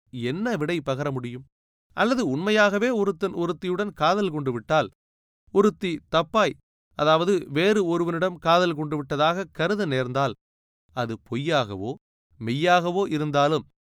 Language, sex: Tamil, male